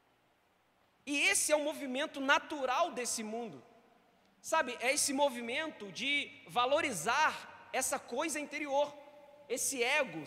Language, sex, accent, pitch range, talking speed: Portuguese, male, Brazilian, 220-285 Hz, 110 wpm